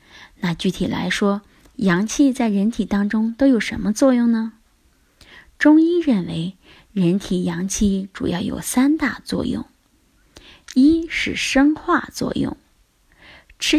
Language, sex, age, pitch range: Chinese, female, 20-39, 185-265 Hz